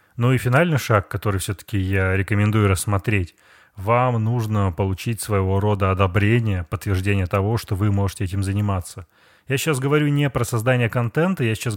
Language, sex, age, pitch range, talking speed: Russian, male, 20-39, 100-115 Hz, 160 wpm